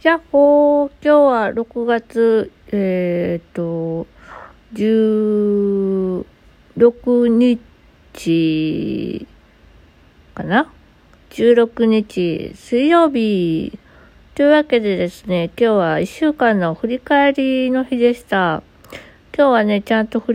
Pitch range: 175-240 Hz